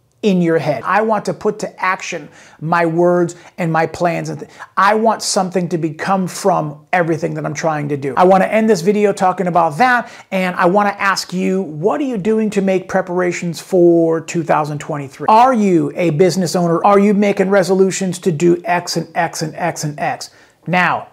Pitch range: 170-205 Hz